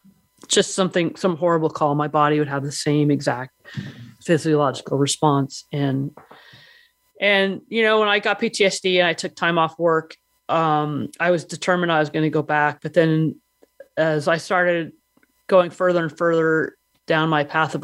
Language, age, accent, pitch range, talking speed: English, 30-49, American, 145-170 Hz, 170 wpm